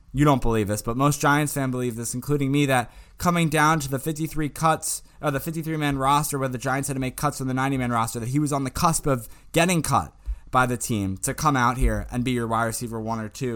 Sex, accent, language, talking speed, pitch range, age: male, American, English, 270 wpm, 115-150 Hz, 20-39